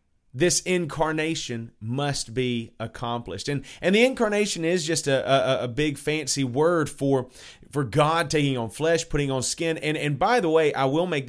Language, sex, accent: English, male, American